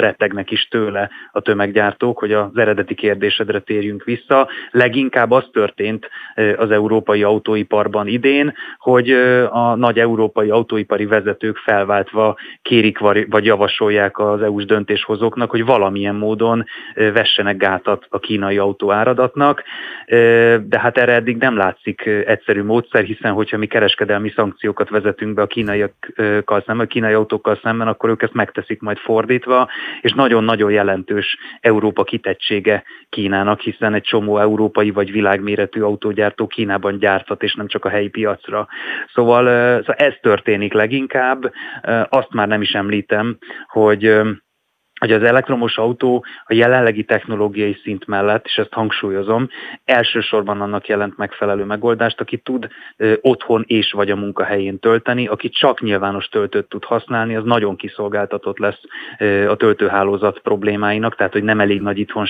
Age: 20-39